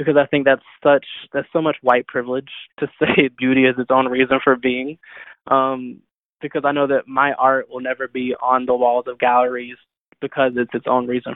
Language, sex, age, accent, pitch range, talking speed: English, male, 20-39, American, 125-140 Hz, 205 wpm